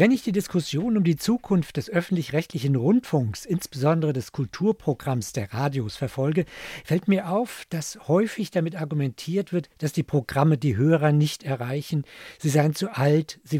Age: 50-69